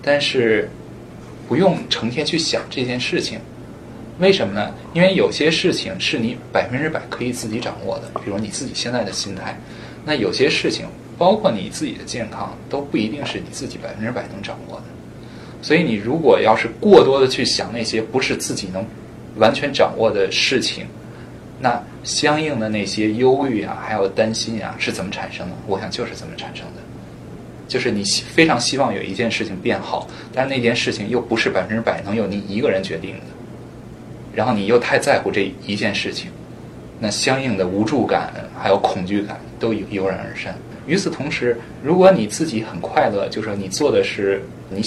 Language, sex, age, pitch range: Chinese, male, 20-39, 100-135 Hz